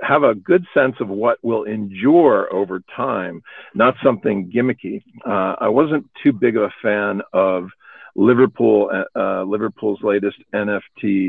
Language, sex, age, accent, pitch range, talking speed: English, male, 50-69, American, 100-115 Hz, 145 wpm